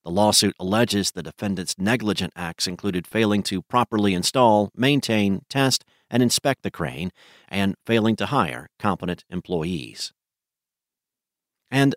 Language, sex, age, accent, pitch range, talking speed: English, male, 50-69, American, 100-130 Hz, 125 wpm